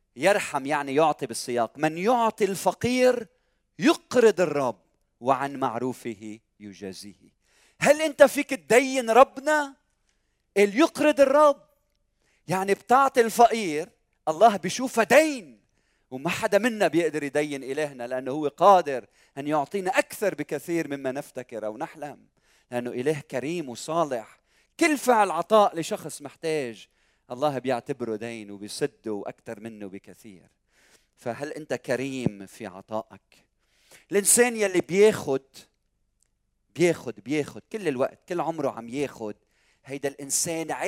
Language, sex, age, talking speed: Arabic, male, 40-59, 115 wpm